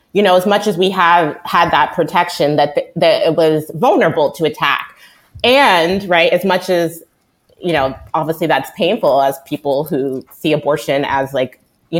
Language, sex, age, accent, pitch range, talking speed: English, female, 30-49, American, 155-190 Hz, 180 wpm